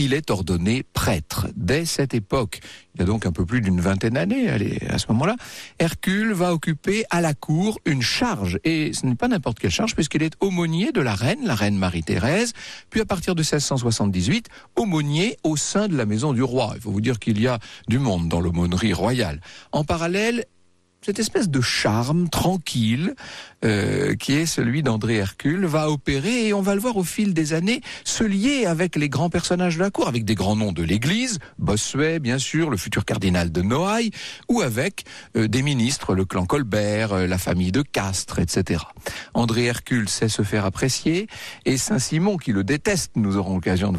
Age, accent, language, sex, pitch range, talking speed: 60-79, French, French, male, 110-180 Hz, 200 wpm